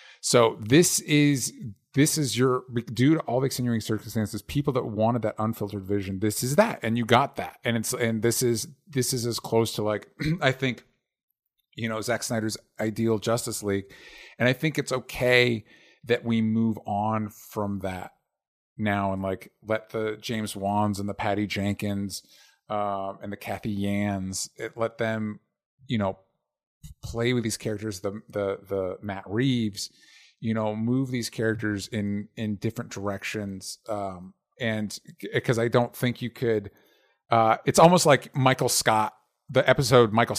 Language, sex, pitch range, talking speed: English, male, 105-130 Hz, 165 wpm